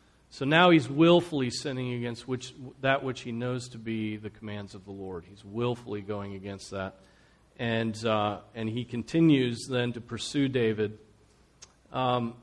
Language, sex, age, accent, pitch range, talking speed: English, male, 40-59, American, 115-145 Hz, 160 wpm